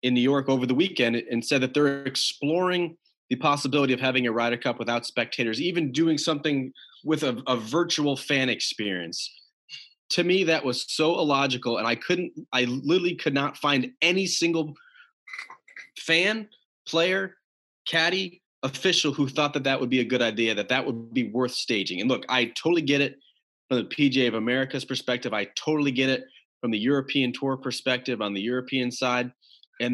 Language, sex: English, male